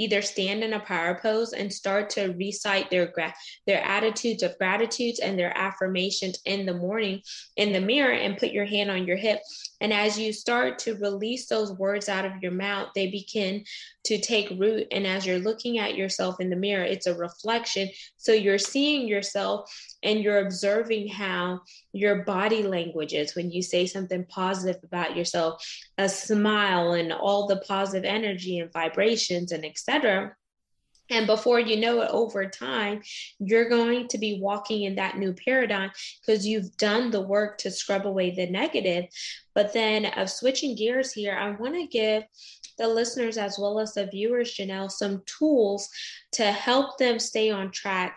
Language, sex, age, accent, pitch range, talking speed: English, female, 20-39, American, 190-220 Hz, 180 wpm